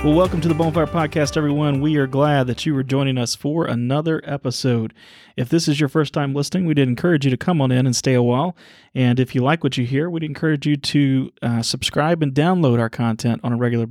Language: English